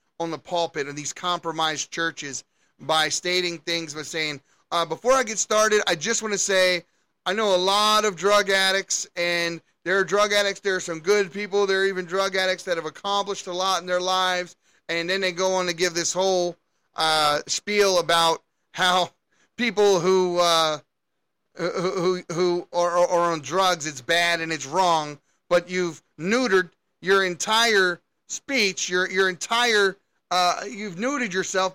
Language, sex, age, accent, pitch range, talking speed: English, male, 30-49, American, 175-205 Hz, 175 wpm